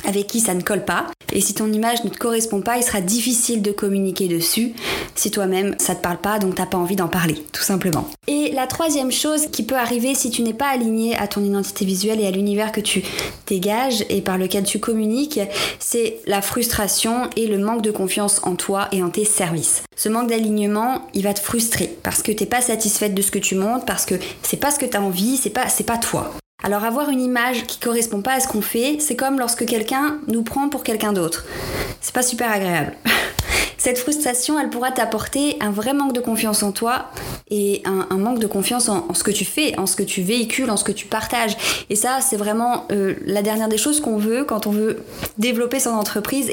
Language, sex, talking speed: French, female, 235 wpm